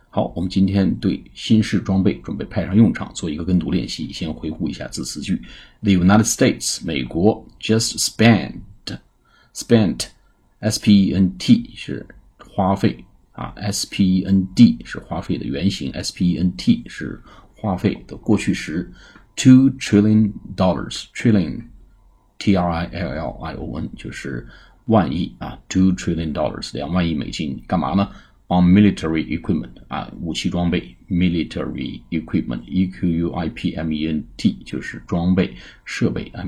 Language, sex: Chinese, male